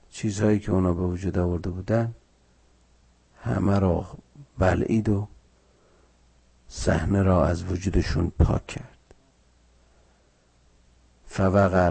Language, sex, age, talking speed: Persian, male, 50-69, 90 wpm